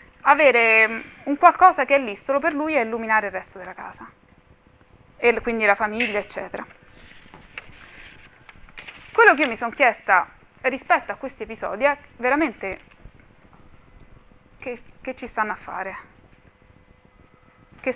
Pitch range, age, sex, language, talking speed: 210-275 Hz, 20-39, female, Italian, 130 wpm